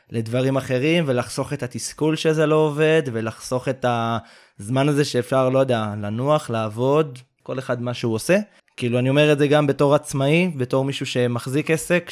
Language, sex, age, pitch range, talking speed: Hebrew, male, 20-39, 125-160 Hz, 170 wpm